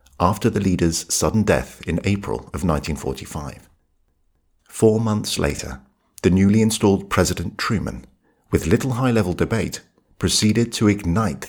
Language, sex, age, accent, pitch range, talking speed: English, male, 50-69, British, 80-105 Hz, 125 wpm